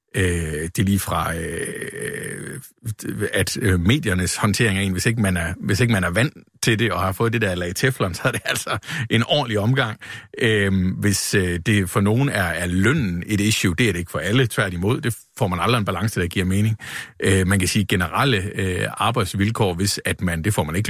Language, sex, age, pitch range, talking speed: Danish, male, 50-69, 95-125 Hz, 205 wpm